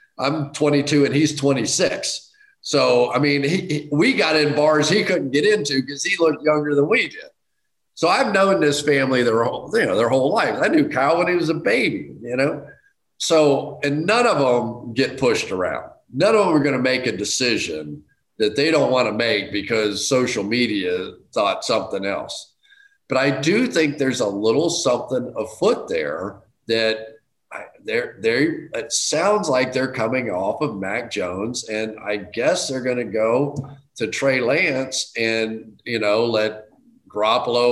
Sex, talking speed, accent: male, 170 wpm, American